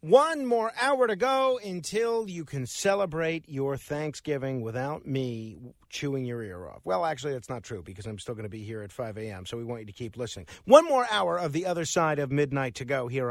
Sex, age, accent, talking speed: male, 50-69, American, 225 wpm